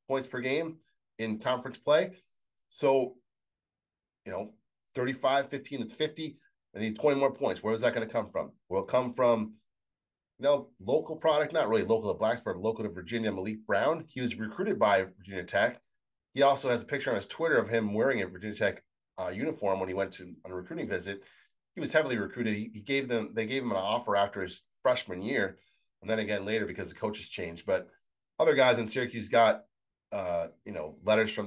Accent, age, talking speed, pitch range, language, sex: American, 30-49, 210 wpm, 105-135 Hz, English, male